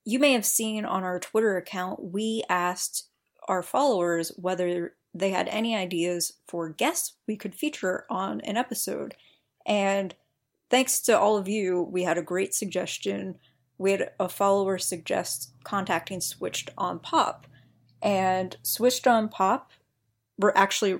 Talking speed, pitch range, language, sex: 145 wpm, 185-215 Hz, English, female